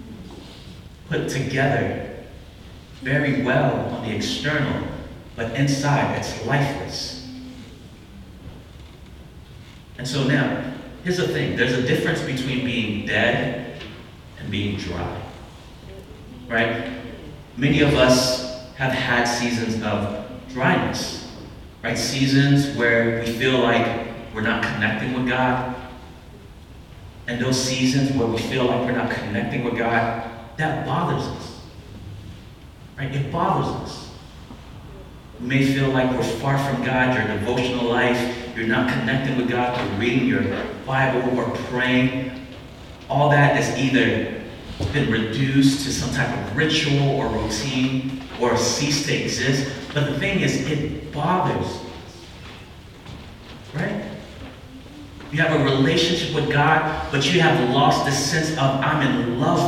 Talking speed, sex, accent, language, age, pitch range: 130 wpm, male, American, English, 30-49, 115-135 Hz